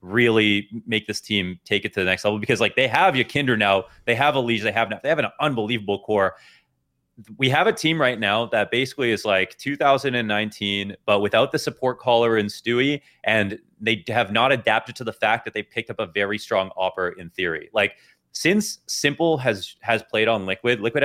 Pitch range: 100-130 Hz